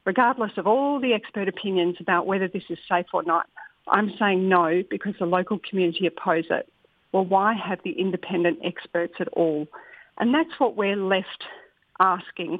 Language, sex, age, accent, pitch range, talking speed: English, female, 50-69, Australian, 180-225 Hz, 170 wpm